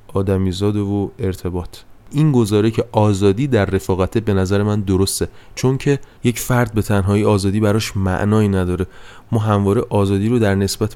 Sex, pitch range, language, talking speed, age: male, 95-115 Hz, Persian, 160 wpm, 30-49